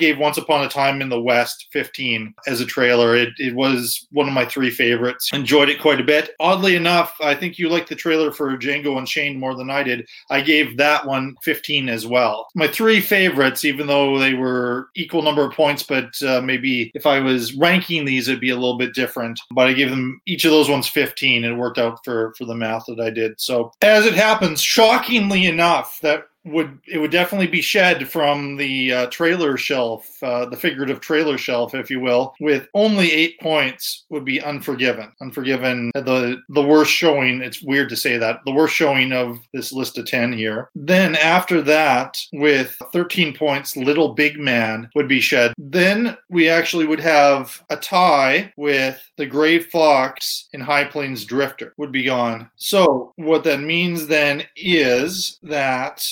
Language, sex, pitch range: English, male, 125-160 Hz